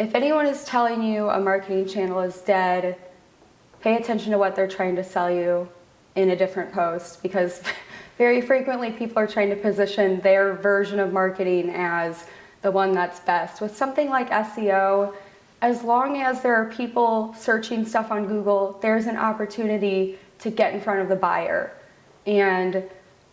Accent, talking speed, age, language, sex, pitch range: American, 165 wpm, 20-39, English, female, 185-215 Hz